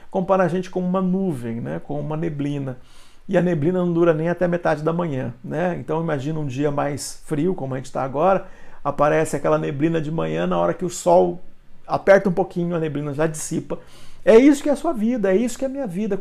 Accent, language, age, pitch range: Brazilian, Portuguese, 50-69, 160-210 Hz